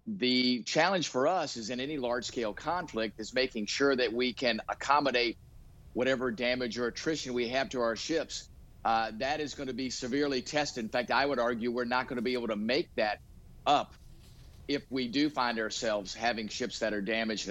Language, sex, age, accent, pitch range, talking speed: English, male, 50-69, American, 115-145 Hz, 200 wpm